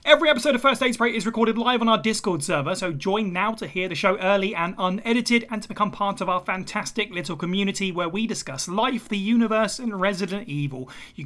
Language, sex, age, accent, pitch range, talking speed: English, male, 30-49, British, 160-215 Hz, 225 wpm